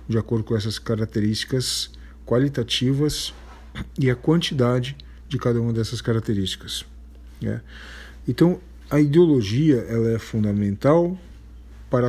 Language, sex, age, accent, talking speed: Portuguese, male, 50-69, Brazilian, 110 wpm